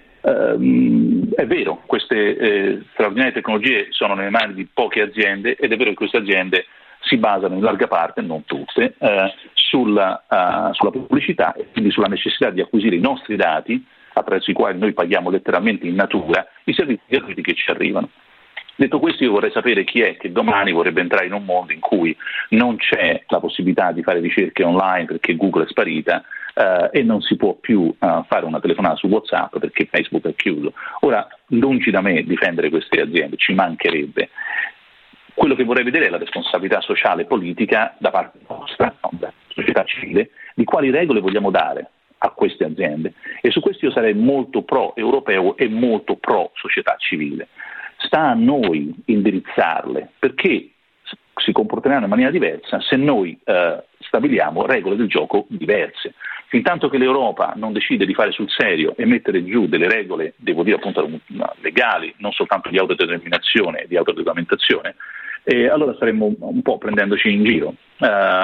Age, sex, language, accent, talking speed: 40-59, male, Italian, native, 170 wpm